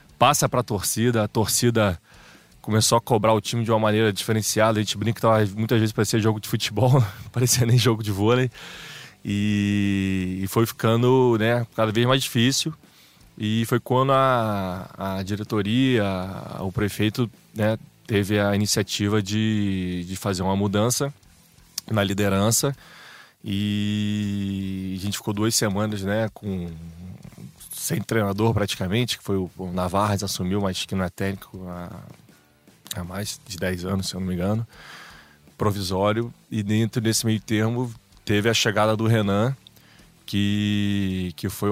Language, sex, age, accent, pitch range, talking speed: Portuguese, male, 20-39, Brazilian, 95-115 Hz, 145 wpm